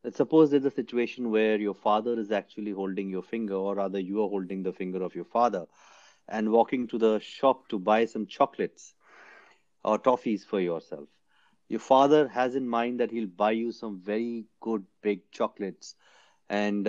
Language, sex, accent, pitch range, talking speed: English, male, Indian, 105-125 Hz, 180 wpm